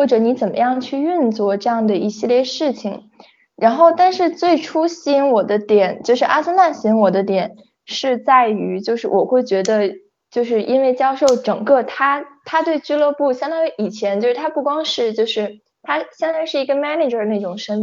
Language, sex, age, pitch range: Chinese, female, 10-29, 210-280 Hz